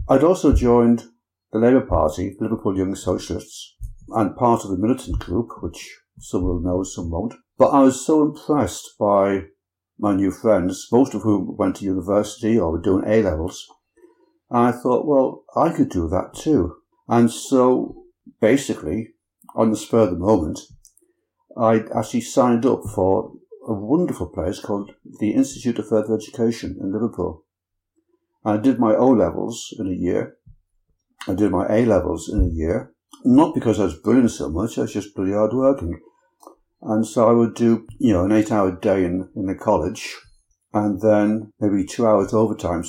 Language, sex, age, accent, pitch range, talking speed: English, male, 60-79, British, 95-120 Hz, 170 wpm